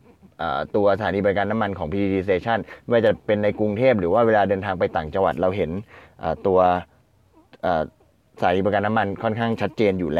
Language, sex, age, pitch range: Thai, male, 20-39, 105-125 Hz